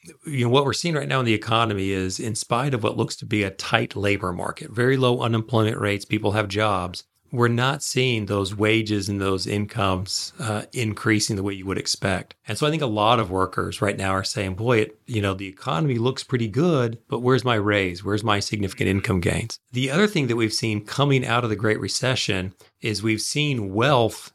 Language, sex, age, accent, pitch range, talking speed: English, male, 30-49, American, 100-130 Hz, 220 wpm